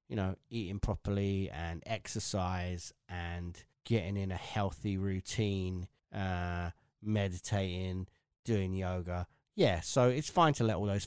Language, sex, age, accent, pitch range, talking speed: English, male, 20-39, British, 110-140 Hz, 130 wpm